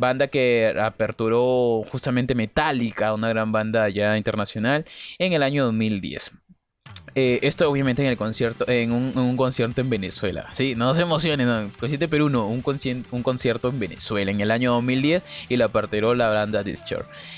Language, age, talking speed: Spanish, 20-39, 175 wpm